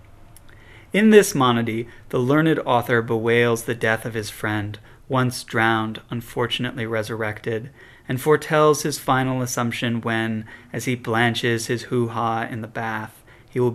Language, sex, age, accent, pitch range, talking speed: English, male, 30-49, American, 110-125 Hz, 140 wpm